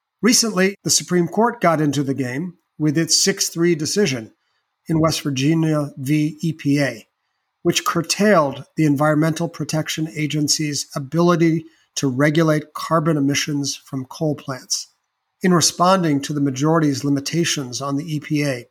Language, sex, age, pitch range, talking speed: English, male, 40-59, 140-165 Hz, 130 wpm